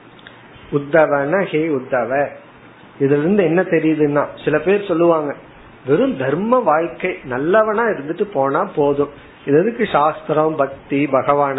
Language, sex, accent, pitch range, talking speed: Tamil, male, native, 140-180 Hz, 85 wpm